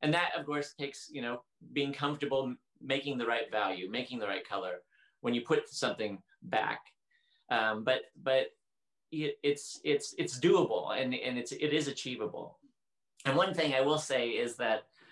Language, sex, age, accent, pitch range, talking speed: English, male, 30-49, American, 120-155 Hz, 170 wpm